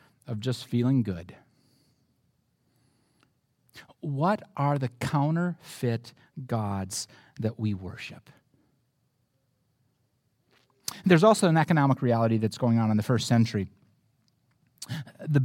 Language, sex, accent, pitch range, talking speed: English, male, American, 125-185 Hz, 95 wpm